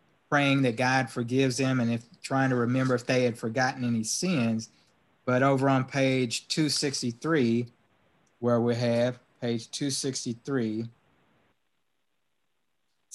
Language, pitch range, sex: English, 120-135 Hz, male